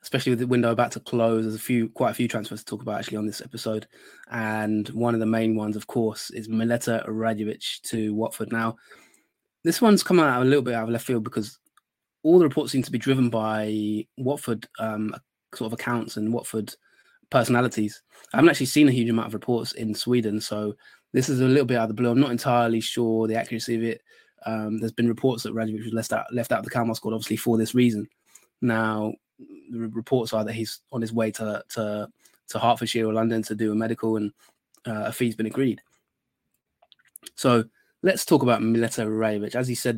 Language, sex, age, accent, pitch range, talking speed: English, male, 20-39, British, 110-125 Hz, 220 wpm